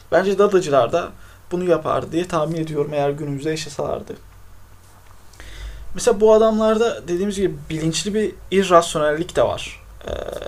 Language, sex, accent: Turkish, male, native